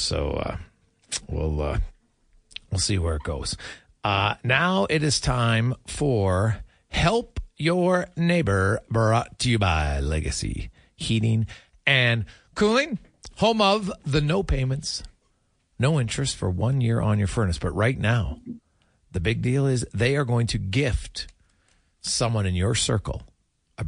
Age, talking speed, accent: 40-59, 140 wpm, American